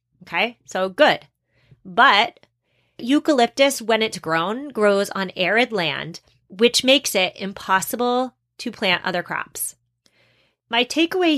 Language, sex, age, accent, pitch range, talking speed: English, female, 30-49, American, 180-240 Hz, 115 wpm